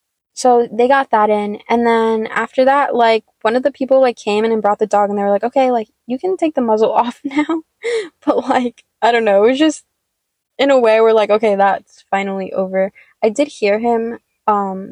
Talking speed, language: 225 wpm, English